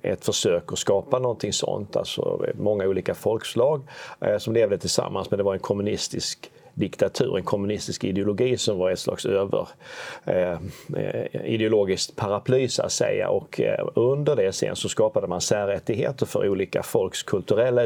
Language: Swedish